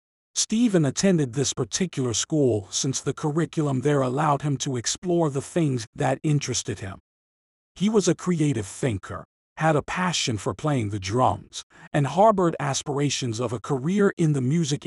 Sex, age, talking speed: male, 50-69, 155 wpm